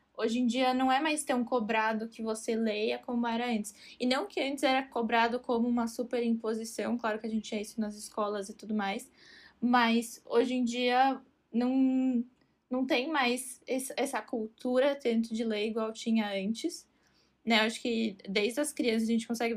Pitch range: 225-255 Hz